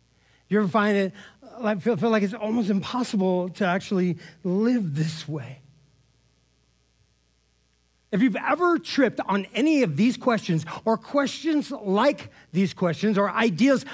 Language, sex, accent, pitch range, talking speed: English, male, American, 155-210 Hz, 140 wpm